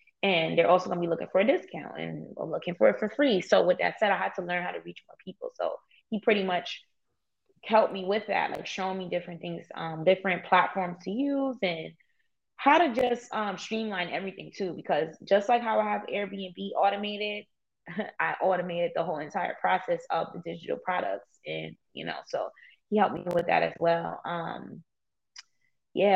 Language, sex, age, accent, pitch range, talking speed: English, female, 20-39, American, 180-210 Hz, 195 wpm